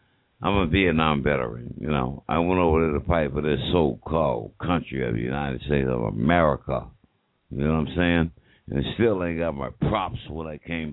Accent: American